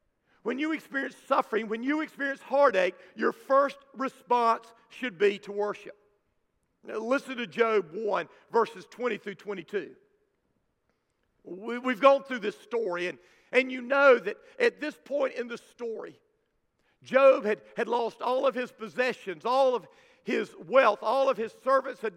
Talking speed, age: 155 wpm, 50-69